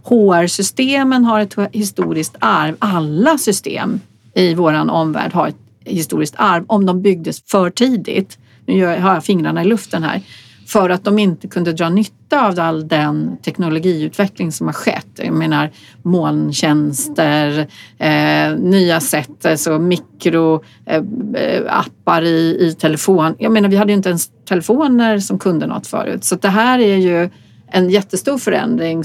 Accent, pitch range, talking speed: Swedish, 165-215 Hz, 145 wpm